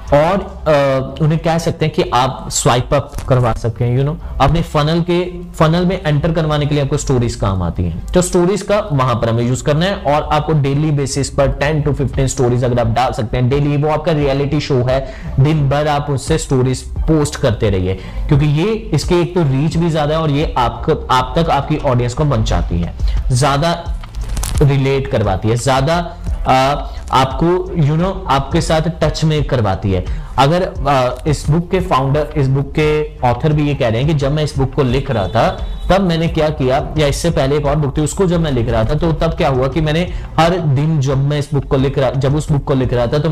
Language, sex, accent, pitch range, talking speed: Hindi, male, native, 130-160 Hz, 230 wpm